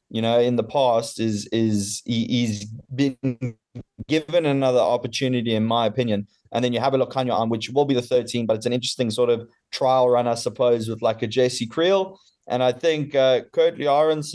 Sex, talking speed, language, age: male, 215 wpm, English, 20-39